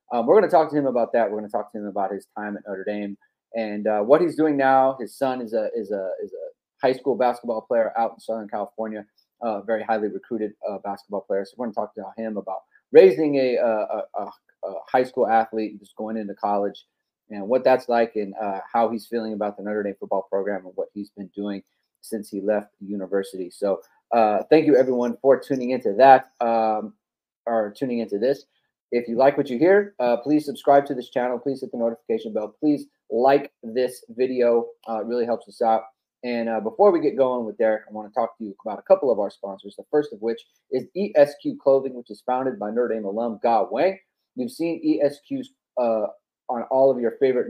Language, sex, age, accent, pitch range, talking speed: English, male, 30-49, American, 105-135 Hz, 230 wpm